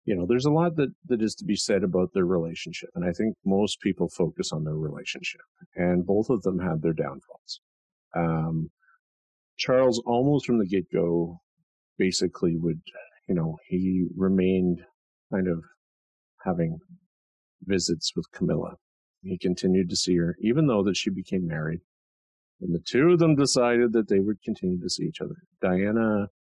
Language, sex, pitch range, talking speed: English, male, 85-120 Hz, 165 wpm